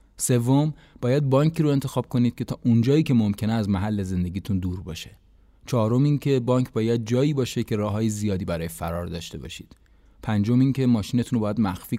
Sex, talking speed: male, 190 wpm